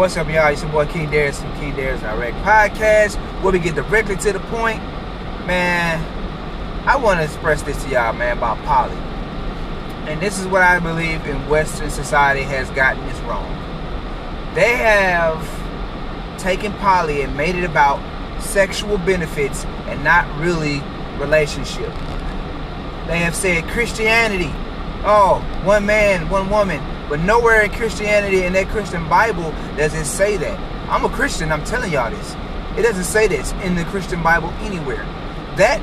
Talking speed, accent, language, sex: 160 wpm, American, English, male